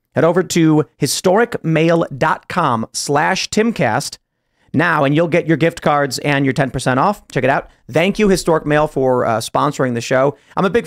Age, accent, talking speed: 30-49, American, 175 wpm